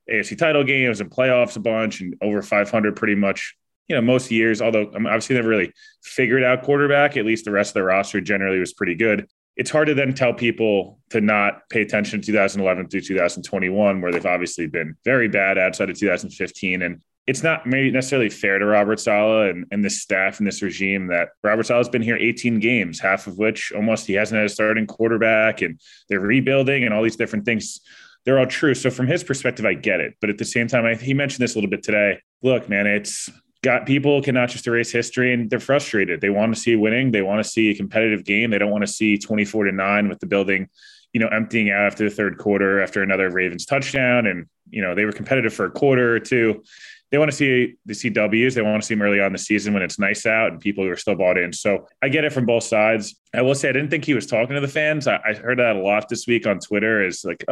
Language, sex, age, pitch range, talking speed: English, male, 20-39, 100-125 Hz, 245 wpm